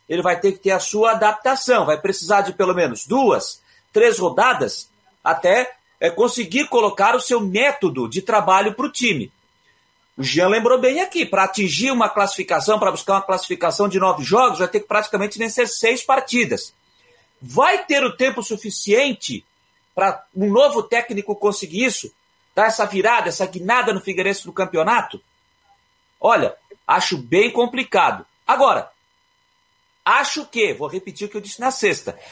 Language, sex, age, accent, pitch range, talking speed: Portuguese, male, 40-59, Brazilian, 200-270 Hz, 160 wpm